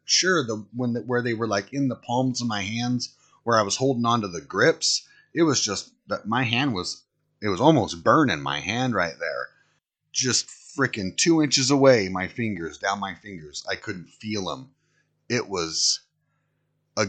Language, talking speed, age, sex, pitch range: English, 190 wpm, 30-49, male, 100-135 Hz